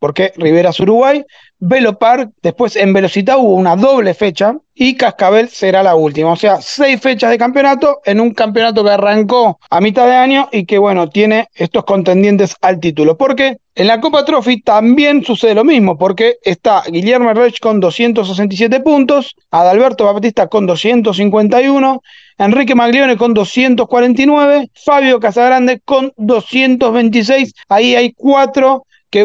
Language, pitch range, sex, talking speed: Spanish, 210-260 Hz, male, 150 wpm